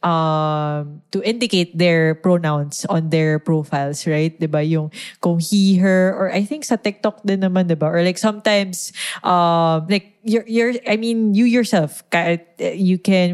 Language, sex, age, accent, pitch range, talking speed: English, female, 20-39, Filipino, 160-205 Hz, 155 wpm